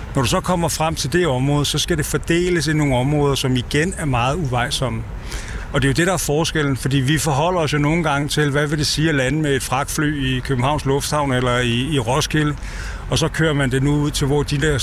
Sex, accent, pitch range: male, native, 135-165 Hz